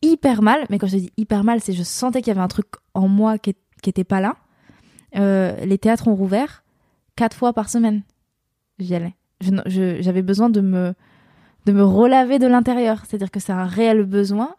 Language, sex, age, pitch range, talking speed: French, female, 20-39, 195-230 Hz, 215 wpm